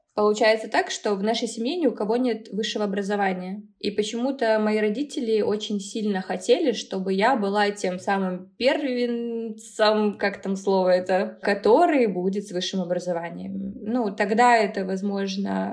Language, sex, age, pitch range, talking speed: Russian, female, 20-39, 190-225 Hz, 145 wpm